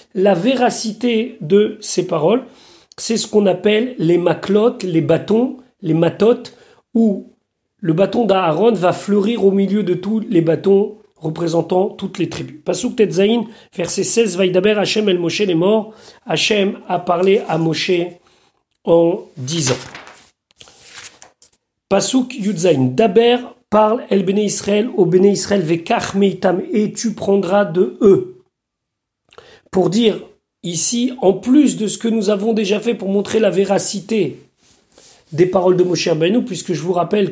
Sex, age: male, 40-59